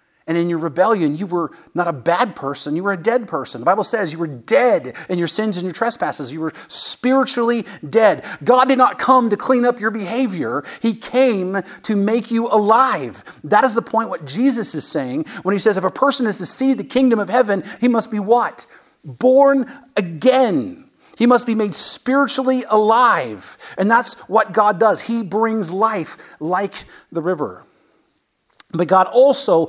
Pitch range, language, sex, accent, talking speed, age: 165-235 Hz, English, male, American, 190 wpm, 40-59